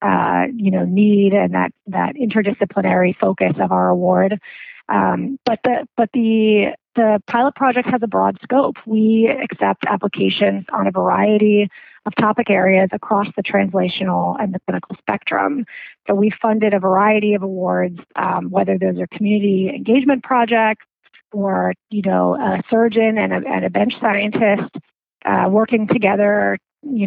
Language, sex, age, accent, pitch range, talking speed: English, female, 30-49, American, 185-225 Hz, 155 wpm